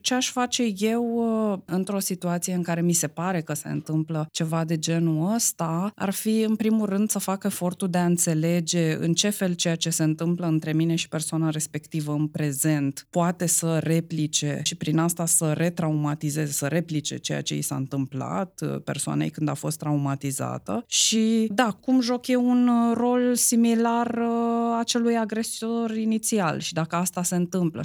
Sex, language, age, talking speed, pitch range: female, Romanian, 20-39, 170 wpm, 155-215 Hz